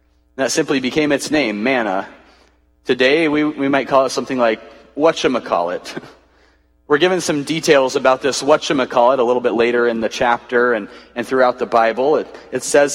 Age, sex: 30-49, male